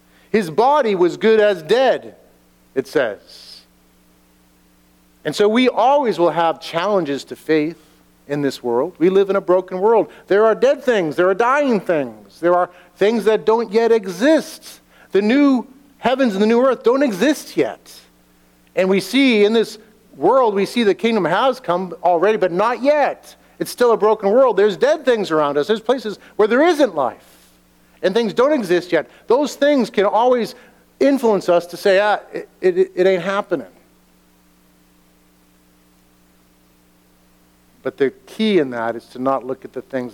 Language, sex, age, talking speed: English, male, 50-69, 170 wpm